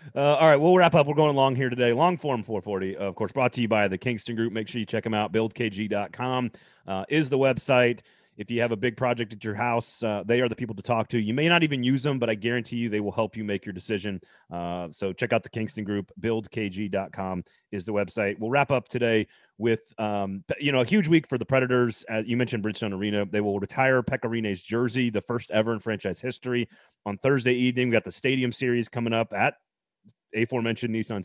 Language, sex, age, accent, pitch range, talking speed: English, male, 30-49, American, 105-125 Hz, 235 wpm